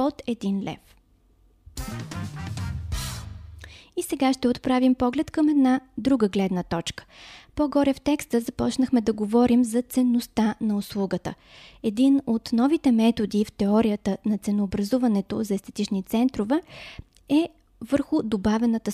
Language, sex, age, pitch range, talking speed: Bulgarian, female, 20-39, 195-260 Hz, 110 wpm